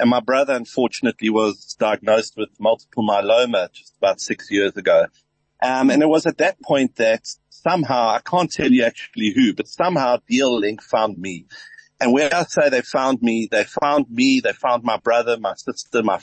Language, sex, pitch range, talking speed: English, male, 115-155 Hz, 190 wpm